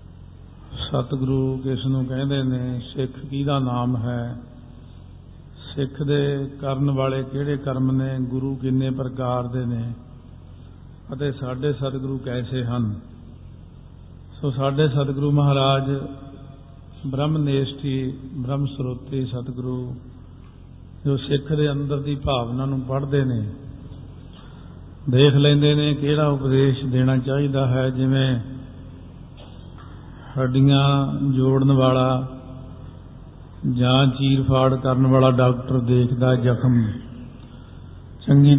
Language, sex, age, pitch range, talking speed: Punjabi, male, 50-69, 125-135 Hz, 100 wpm